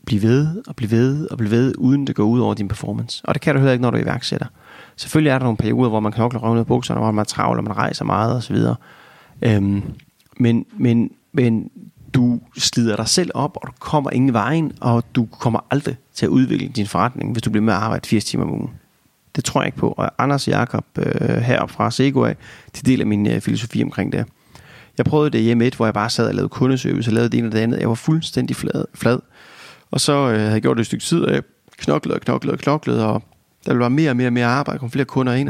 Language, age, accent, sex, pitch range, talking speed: Danish, 30-49, native, male, 110-135 Hz, 255 wpm